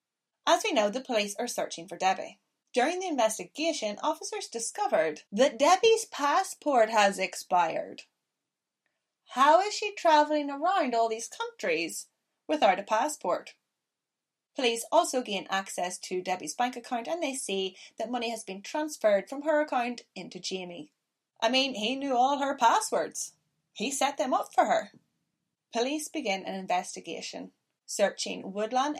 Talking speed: 145 wpm